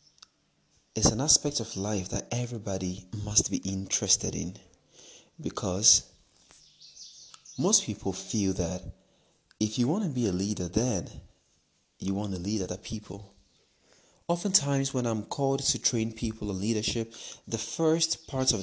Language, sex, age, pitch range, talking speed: English, male, 30-49, 95-120 Hz, 135 wpm